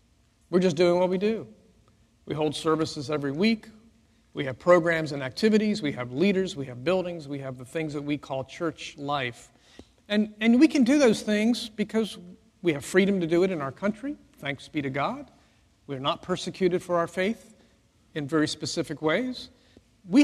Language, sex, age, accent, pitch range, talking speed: English, male, 50-69, American, 140-190 Hz, 185 wpm